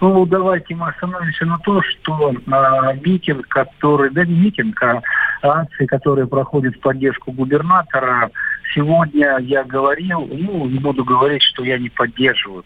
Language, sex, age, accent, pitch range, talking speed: Russian, male, 50-69, native, 120-150 Hz, 135 wpm